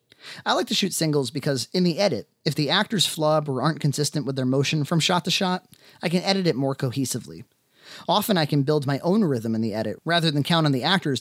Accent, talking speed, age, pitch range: American, 240 wpm, 30-49, 130-175 Hz